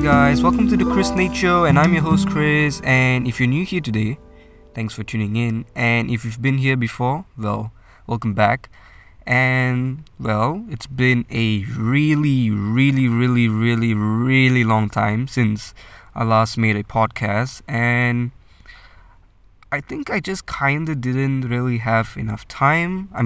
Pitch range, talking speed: 110-140 Hz, 160 wpm